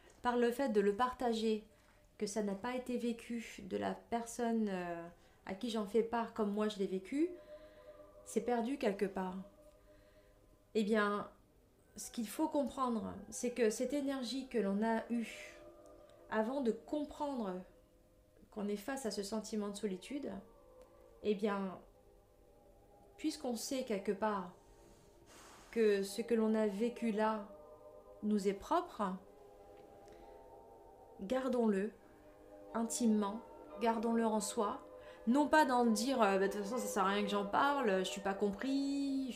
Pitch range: 195-245 Hz